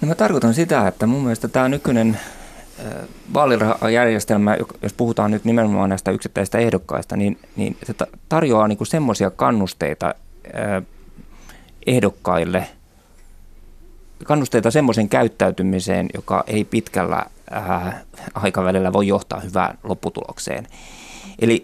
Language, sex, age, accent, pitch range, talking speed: Finnish, male, 20-39, native, 95-115 Hz, 105 wpm